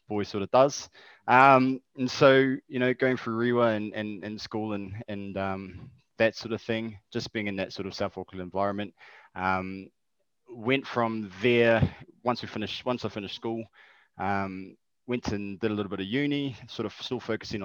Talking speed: 195 wpm